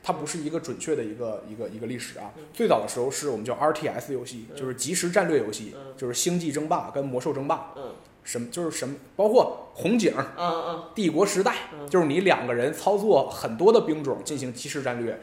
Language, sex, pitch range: Chinese, male, 125-190 Hz